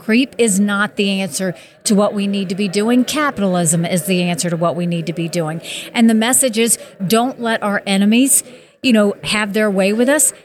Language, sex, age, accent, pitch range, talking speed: English, female, 50-69, American, 195-225 Hz, 220 wpm